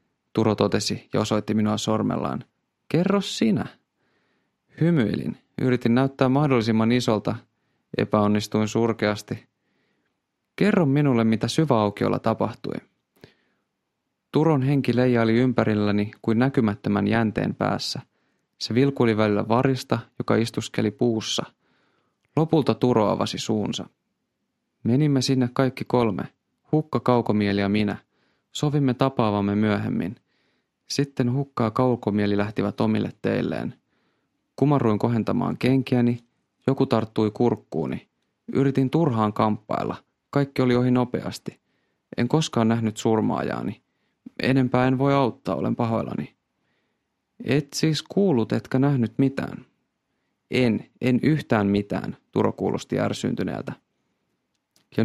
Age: 30-49